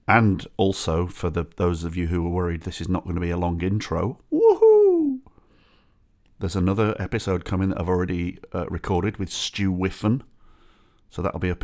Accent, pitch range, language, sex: British, 85-105 Hz, English, male